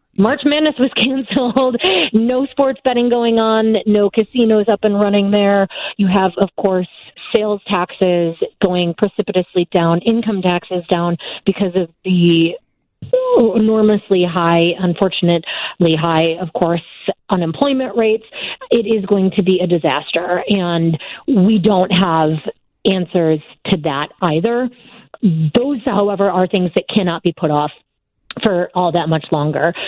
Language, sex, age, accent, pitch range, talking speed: English, female, 30-49, American, 175-220 Hz, 135 wpm